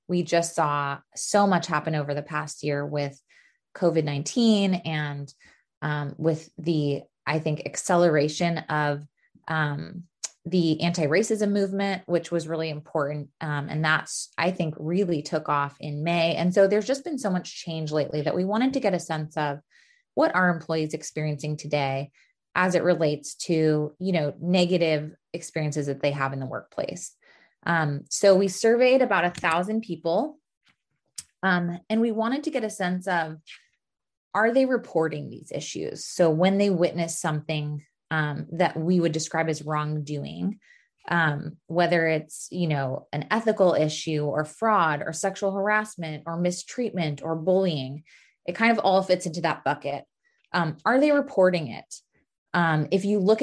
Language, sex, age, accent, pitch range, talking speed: English, female, 20-39, American, 150-190 Hz, 160 wpm